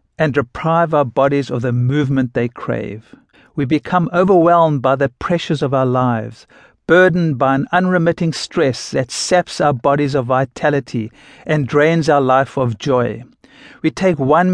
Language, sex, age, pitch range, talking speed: English, male, 60-79, 130-160 Hz, 155 wpm